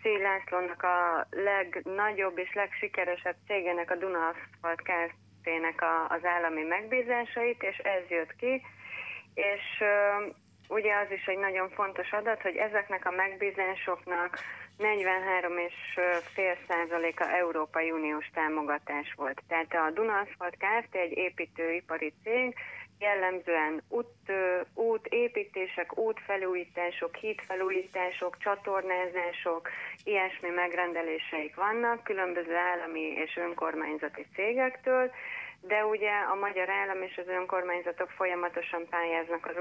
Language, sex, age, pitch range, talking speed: Hungarian, female, 30-49, 170-195 Hz, 100 wpm